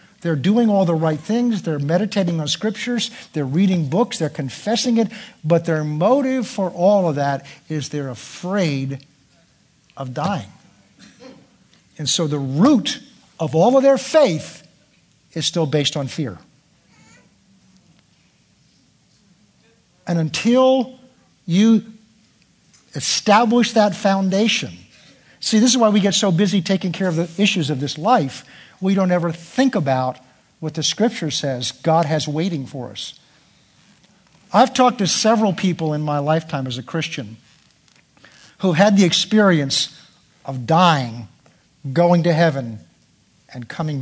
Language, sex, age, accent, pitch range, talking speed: English, male, 50-69, American, 150-210 Hz, 135 wpm